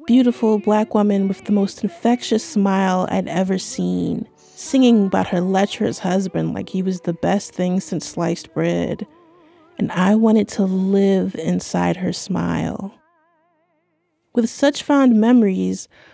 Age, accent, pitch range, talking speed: 30-49, American, 180-225 Hz, 140 wpm